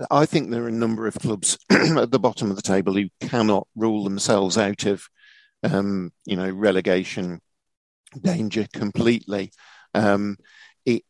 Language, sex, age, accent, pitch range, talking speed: English, male, 50-69, British, 100-125 Hz, 150 wpm